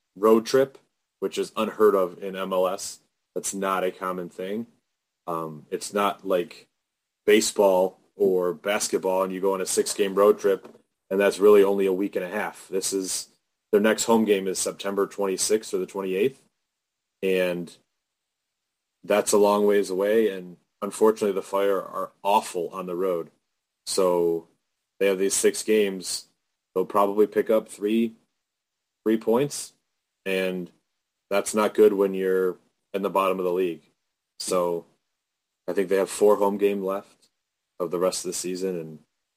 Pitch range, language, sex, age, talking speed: 90-105 Hz, English, male, 30-49, 160 wpm